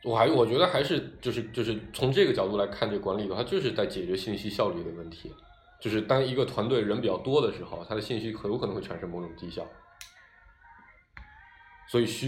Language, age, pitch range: Chinese, 20-39, 100-135 Hz